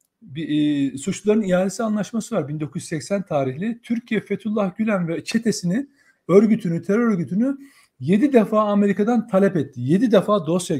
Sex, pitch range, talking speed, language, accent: male, 165-220 Hz, 135 wpm, Turkish, native